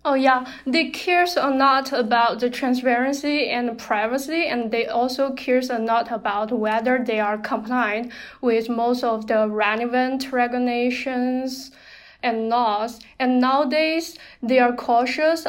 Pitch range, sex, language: 225-260 Hz, female, English